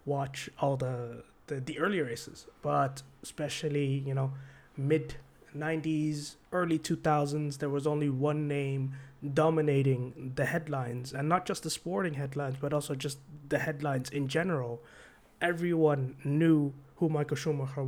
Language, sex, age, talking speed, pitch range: English, male, 20-39, 140 wpm, 140-160 Hz